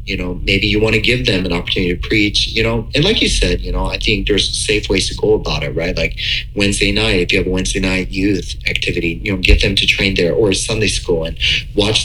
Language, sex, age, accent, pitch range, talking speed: English, male, 30-49, American, 90-115 Hz, 265 wpm